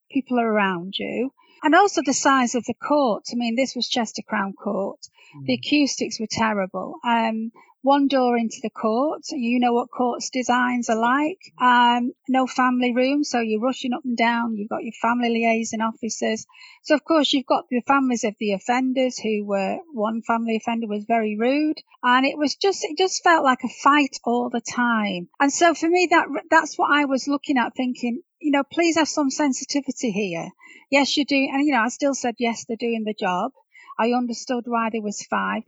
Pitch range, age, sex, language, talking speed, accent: 230-280 Hz, 40-59, female, English, 205 wpm, British